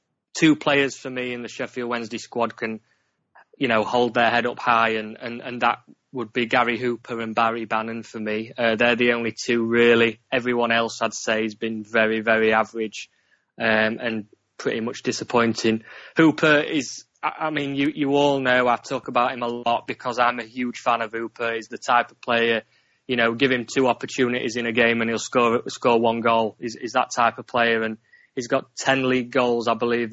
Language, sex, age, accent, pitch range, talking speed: English, male, 20-39, British, 115-130 Hz, 210 wpm